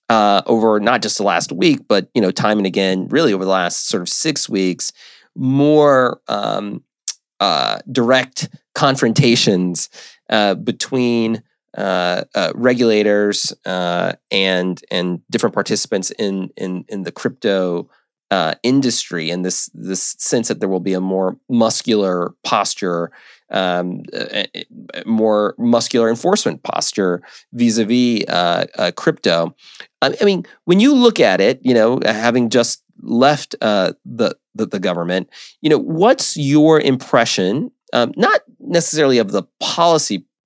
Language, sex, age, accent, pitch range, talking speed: English, male, 30-49, American, 95-130 Hz, 140 wpm